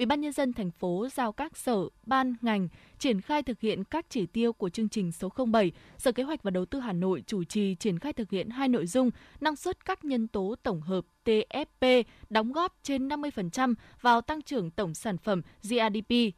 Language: Vietnamese